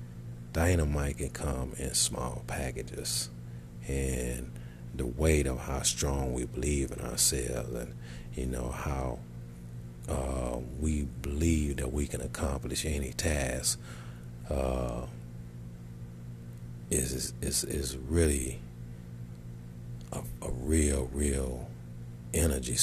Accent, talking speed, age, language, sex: American, 105 wpm, 40-59, English, male